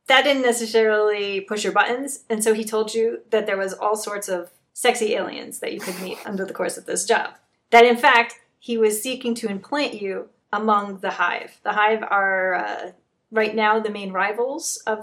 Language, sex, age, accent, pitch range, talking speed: English, female, 30-49, American, 200-255 Hz, 205 wpm